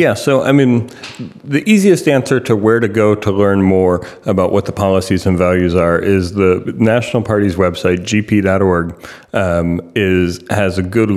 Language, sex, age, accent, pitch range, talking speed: English, male, 30-49, American, 95-115 Hz, 170 wpm